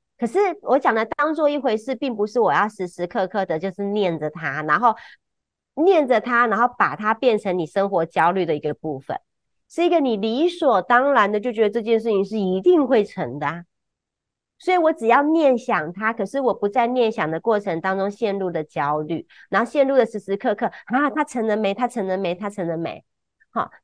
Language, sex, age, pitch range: Chinese, female, 30-49, 180-255 Hz